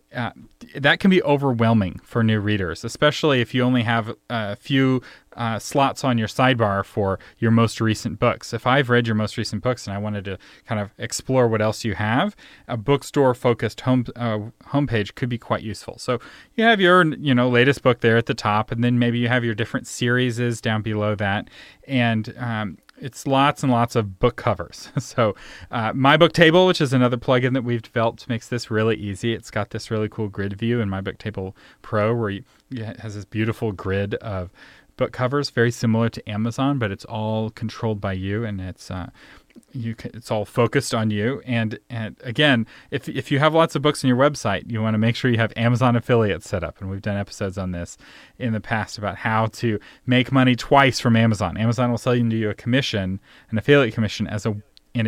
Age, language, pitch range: 30-49, English, 105-125 Hz